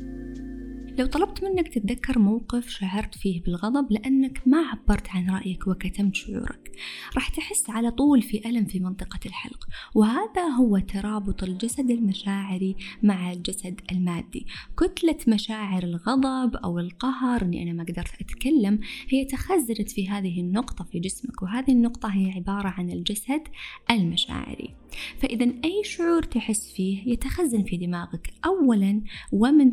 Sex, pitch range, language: female, 185-260 Hz, Arabic